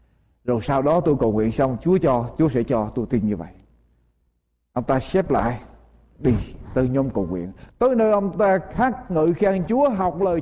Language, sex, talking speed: Vietnamese, male, 200 wpm